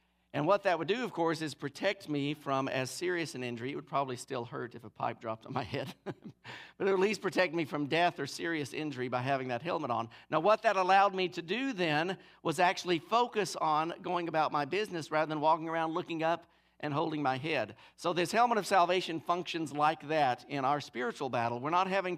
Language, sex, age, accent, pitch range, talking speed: English, male, 50-69, American, 135-175 Hz, 230 wpm